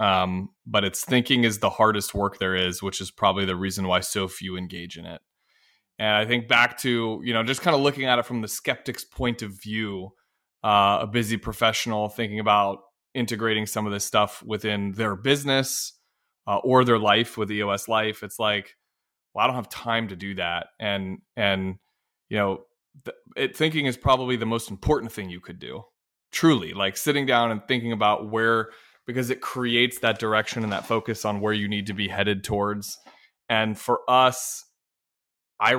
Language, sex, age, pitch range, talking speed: English, male, 20-39, 100-115 Hz, 190 wpm